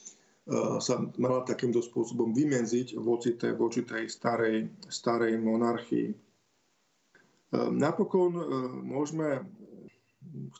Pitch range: 120-140 Hz